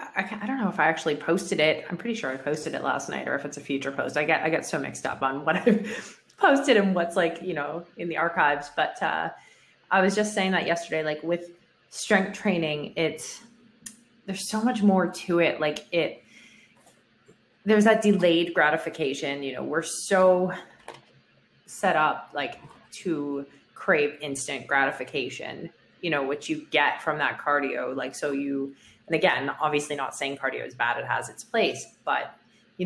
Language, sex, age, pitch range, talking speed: English, female, 20-39, 140-190 Hz, 185 wpm